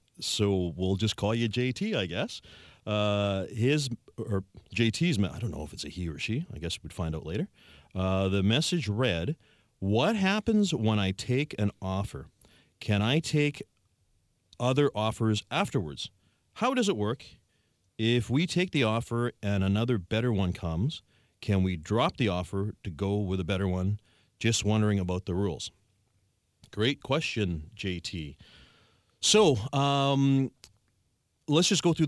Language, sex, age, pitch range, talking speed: English, male, 40-59, 95-125 Hz, 155 wpm